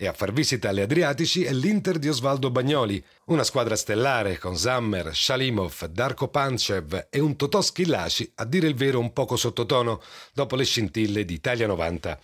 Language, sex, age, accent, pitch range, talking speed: Italian, male, 40-59, native, 105-160 Hz, 175 wpm